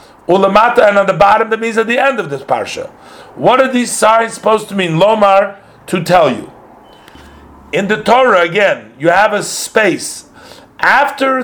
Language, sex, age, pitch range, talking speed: English, male, 50-69, 170-215 Hz, 175 wpm